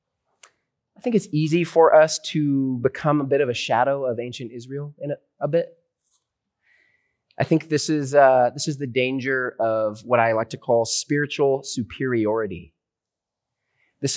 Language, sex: English, male